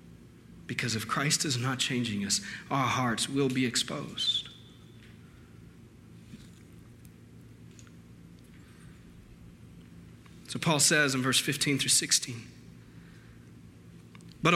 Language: English